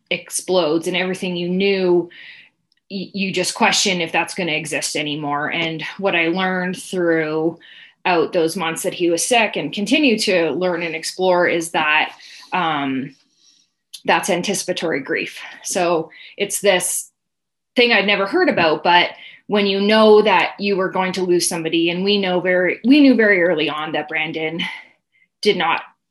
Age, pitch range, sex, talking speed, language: 20-39, 165-200 Hz, female, 160 wpm, English